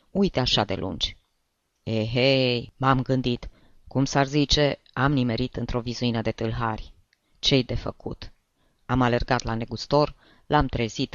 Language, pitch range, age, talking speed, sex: Romanian, 110-135 Hz, 20-39, 135 wpm, female